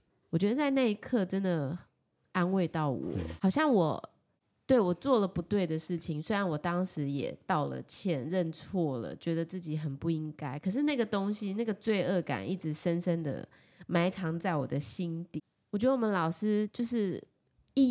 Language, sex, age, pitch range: Chinese, female, 20-39, 155-200 Hz